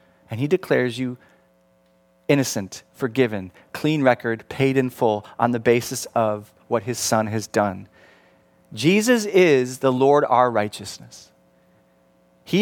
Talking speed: 130 wpm